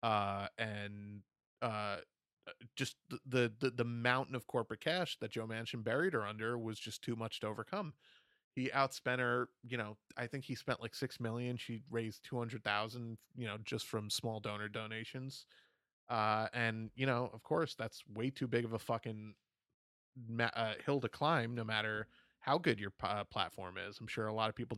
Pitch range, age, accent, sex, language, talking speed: 110-130 Hz, 30-49, American, male, English, 190 wpm